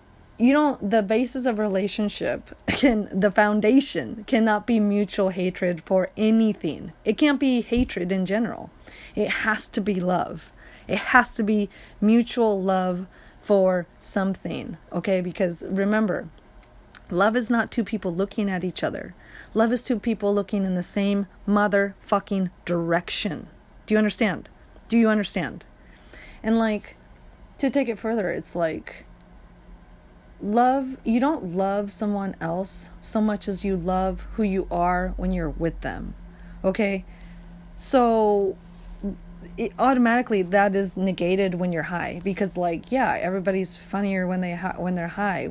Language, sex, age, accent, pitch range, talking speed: English, female, 30-49, American, 175-215 Hz, 140 wpm